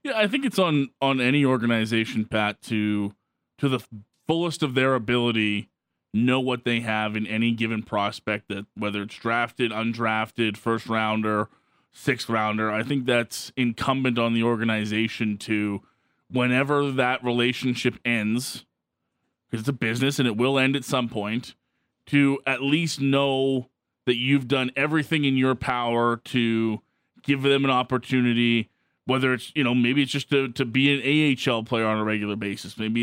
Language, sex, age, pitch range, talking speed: English, male, 20-39, 110-135 Hz, 165 wpm